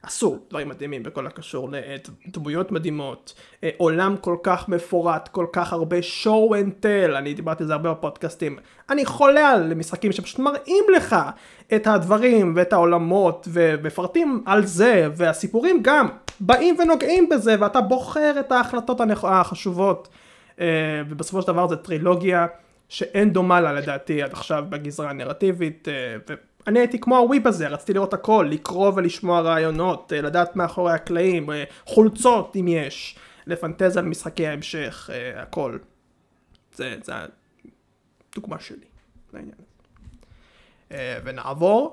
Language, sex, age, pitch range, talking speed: Hebrew, male, 30-49, 165-225 Hz, 130 wpm